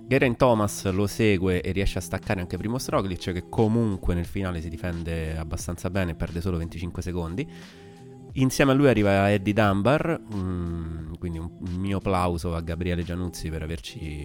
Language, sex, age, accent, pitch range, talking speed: Italian, male, 30-49, native, 85-105 Hz, 160 wpm